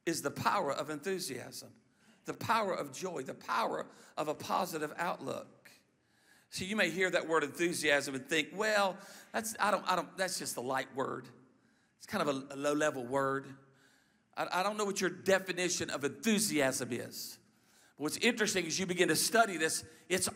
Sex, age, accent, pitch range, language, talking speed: male, 50-69, American, 180-225 Hz, English, 185 wpm